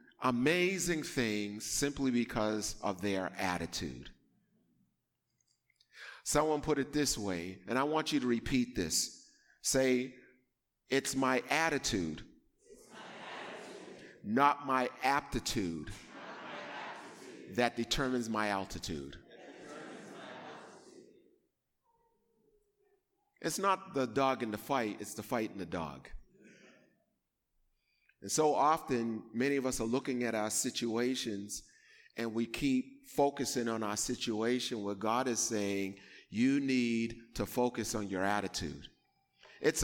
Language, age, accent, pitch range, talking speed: English, 40-59, American, 105-140 Hz, 110 wpm